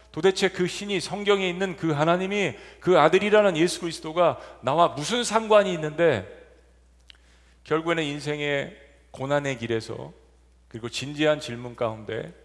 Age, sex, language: 40-59, male, Korean